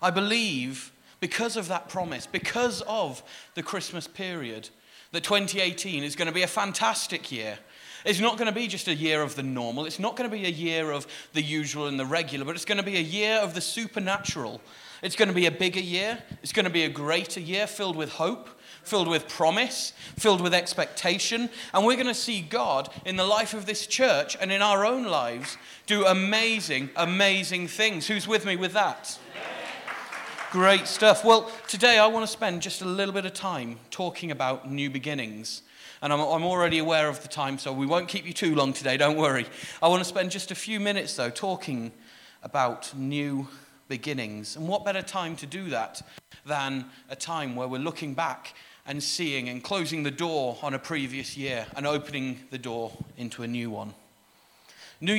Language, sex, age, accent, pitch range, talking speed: English, male, 30-49, British, 140-200 Hz, 200 wpm